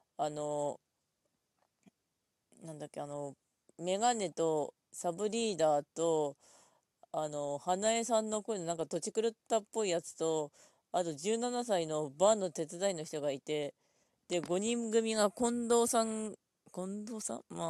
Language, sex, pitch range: Japanese, female, 155-220 Hz